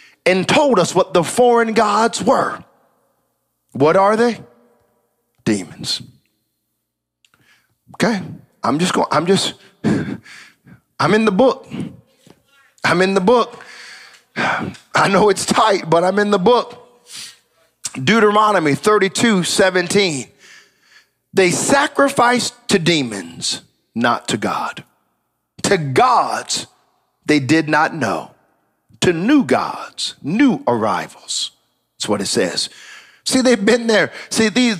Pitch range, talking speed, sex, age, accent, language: 175-250 Hz, 115 wpm, male, 40-59, American, English